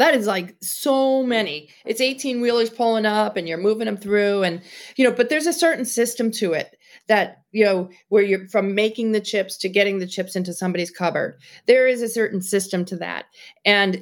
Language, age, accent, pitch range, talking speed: English, 40-59, American, 185-240 Hz, 210 wpm